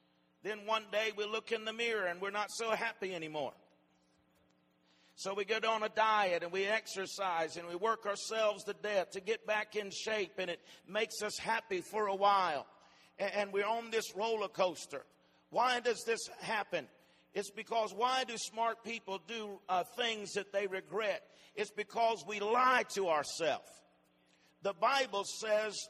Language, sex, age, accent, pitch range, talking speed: English, male, 50-69, American, 190-230 Hz, 170 wpm